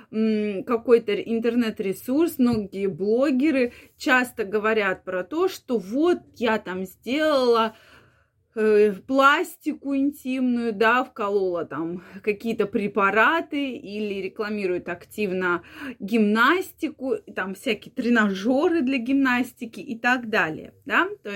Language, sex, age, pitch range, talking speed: Russian, female, 20-39, 220-310 Hz, 95 wpm